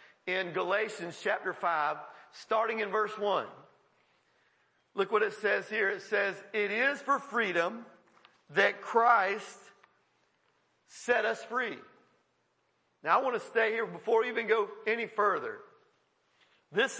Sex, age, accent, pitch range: male, 50-69, American, 190-255 Hz